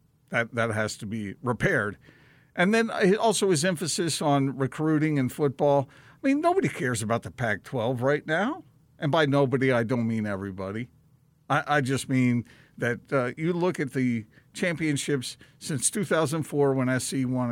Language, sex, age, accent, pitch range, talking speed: English, male, 50-69, American, 120-155 Hz, 160 wpm